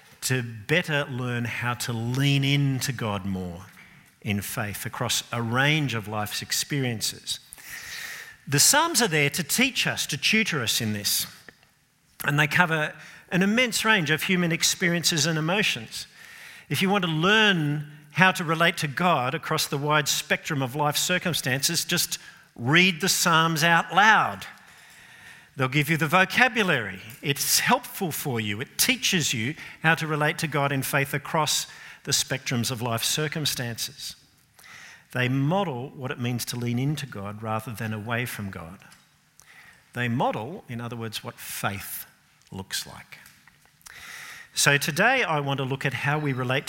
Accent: Australian